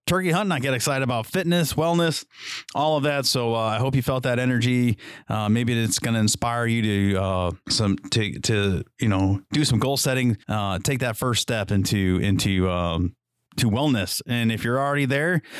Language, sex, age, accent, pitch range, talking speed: English, male, 30-49, American, 95-120 Hz, 200 wpm